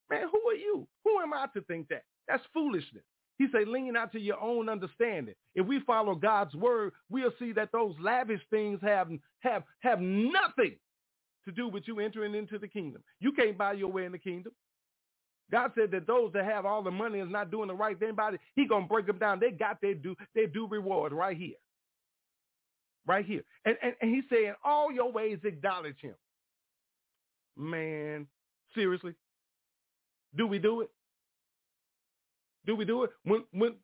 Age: 40-59